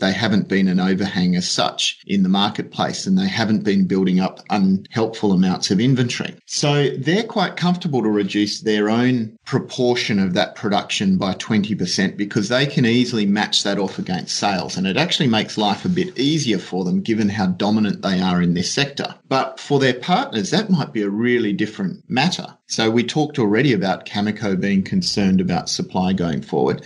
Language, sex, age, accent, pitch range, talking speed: English, male, 30-49, Australian, 105-155 Hz, 190 wpm